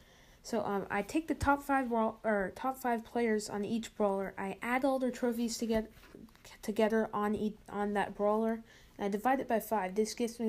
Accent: American